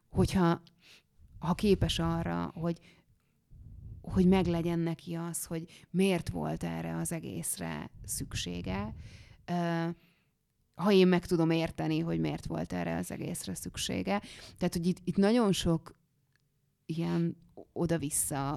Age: 30-49